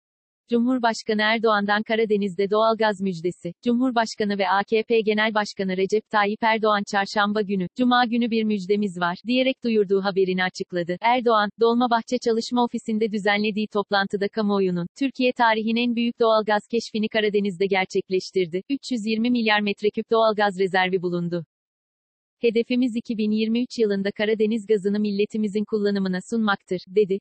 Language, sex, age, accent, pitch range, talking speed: Turkish, female, 40-59, native, 200-230 Hz, 120 wpm